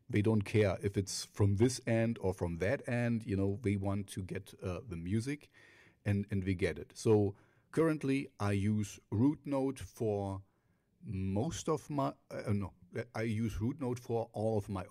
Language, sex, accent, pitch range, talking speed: English, male, German, 95-115 Hz, 175 wpm